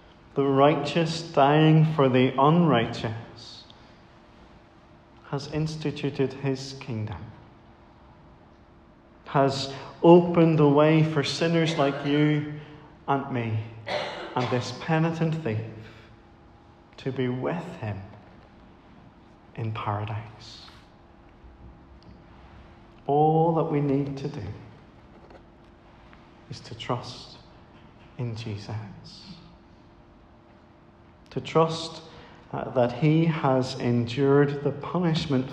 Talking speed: 85 wpm